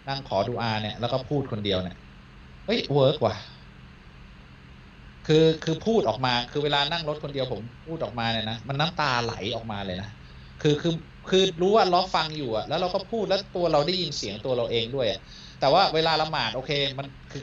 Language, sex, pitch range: Thai, male, 115-155 Hz